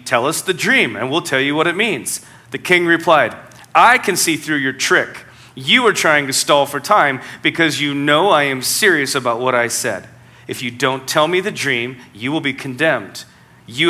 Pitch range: 130-185 Hz